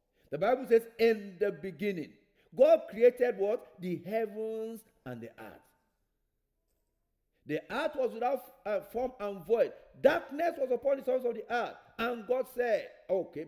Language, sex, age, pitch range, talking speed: English, male, 50-69, 200-275 Hz, 145 wpm